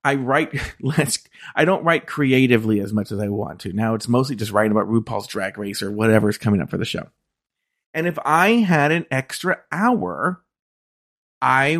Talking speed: 195 wpm